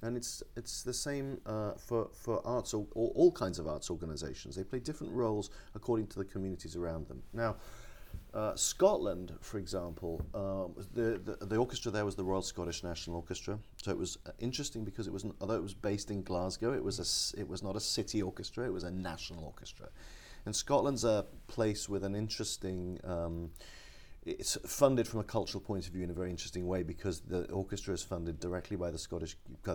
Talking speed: 205 wpm